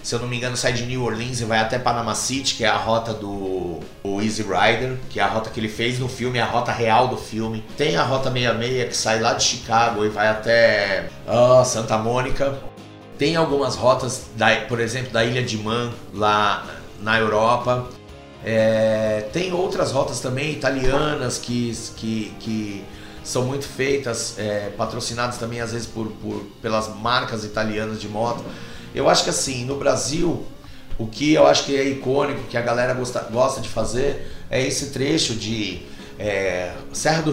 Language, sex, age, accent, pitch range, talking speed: Portuguese, male, 30-49, Brazilian, 110-130 Hz, 170 wpm